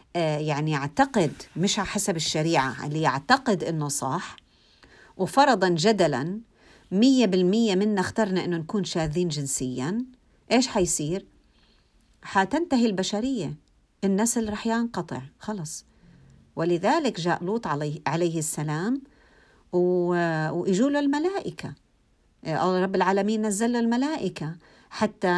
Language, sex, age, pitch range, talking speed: Arabic, female, 50-69, 170-230 Hz, 95 wpm